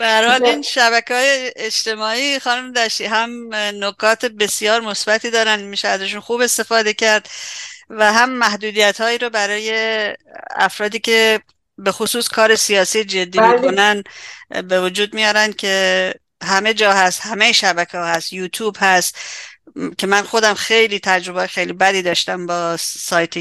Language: English